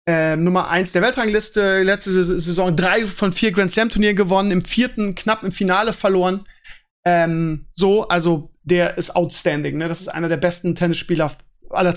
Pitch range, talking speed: 170-210 Hz, 160 wpm